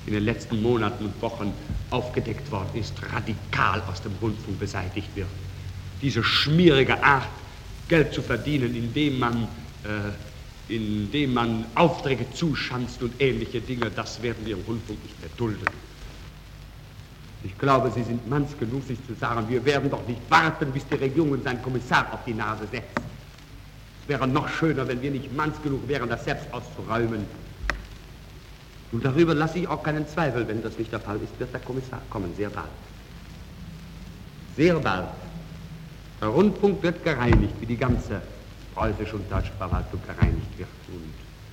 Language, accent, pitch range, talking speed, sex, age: German, German, 105-135 Hz, 160 wpm, male, 60-79